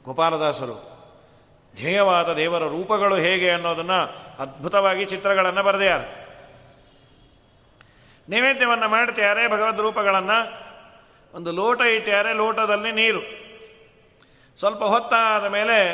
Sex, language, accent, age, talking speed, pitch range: male, Kannada, native, 40-59, 85 wpm, 145-215 Hz